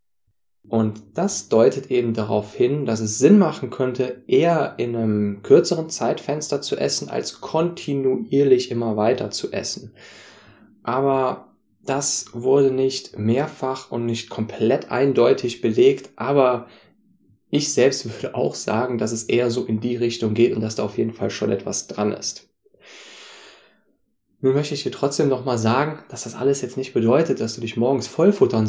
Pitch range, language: 110-140 Hz, German